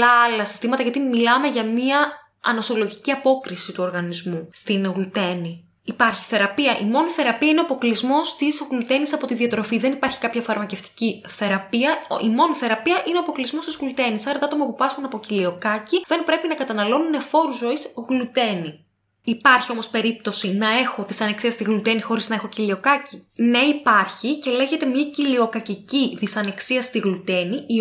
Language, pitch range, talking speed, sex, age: Greek, 210-270 Hz, 160 wpm, female, 10-29